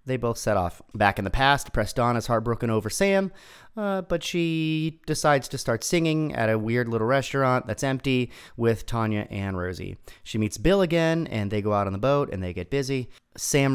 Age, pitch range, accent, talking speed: 30-49, 100-135 Hz, American, 210 wpm